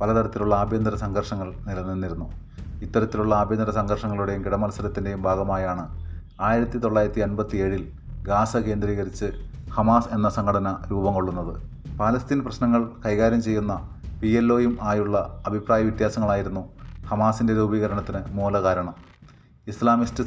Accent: native